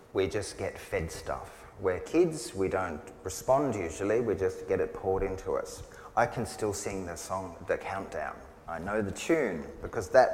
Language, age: English, 30-49